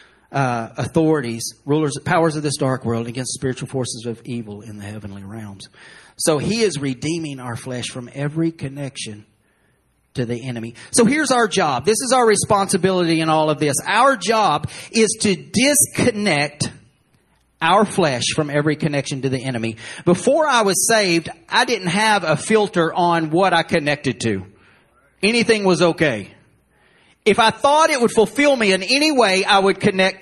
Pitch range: 145-220 Hz